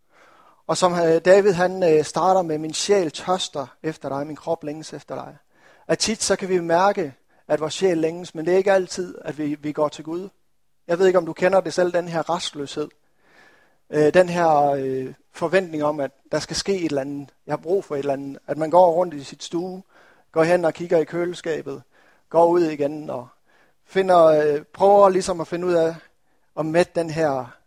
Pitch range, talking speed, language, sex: 150-175 Hz, 200 wpm, Danish, male